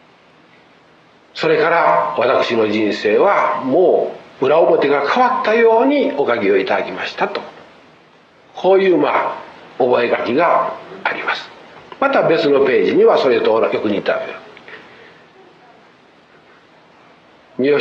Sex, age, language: male, 50-69, Japanese